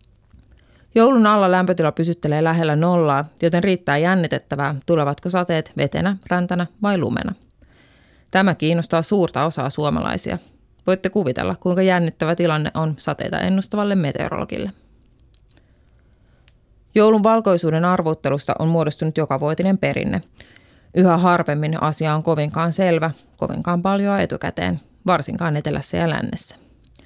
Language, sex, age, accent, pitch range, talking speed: Finnish, female, 30-49, native, 155-185 Hz, 110 wpm